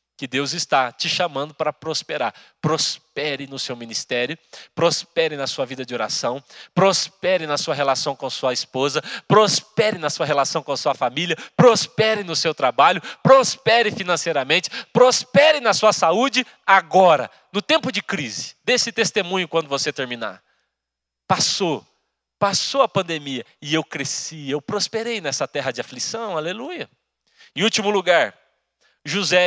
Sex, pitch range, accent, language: male, 150-220 Hz, Brazilian, Portuguese